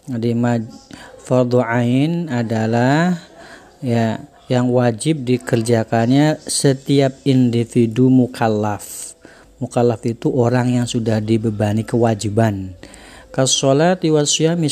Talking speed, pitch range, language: 80 wpm, 120-150 Hz, Indonesian